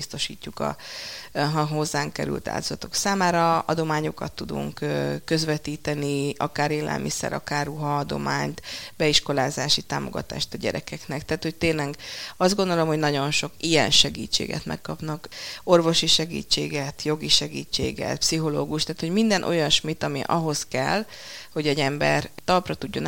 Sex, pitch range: female, 145-170 Hz